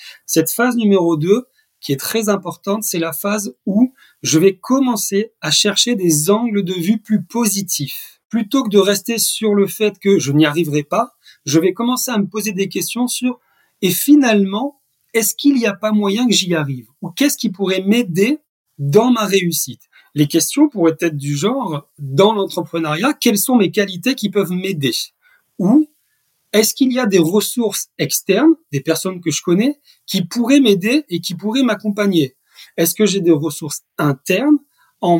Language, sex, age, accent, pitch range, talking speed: French, male, 40-59, French, 170-240 Hz, 190 wpm